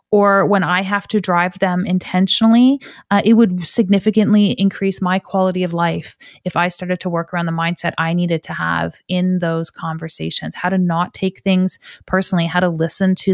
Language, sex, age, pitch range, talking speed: English, female, 30-49, 170-195 Hz, 190 wpm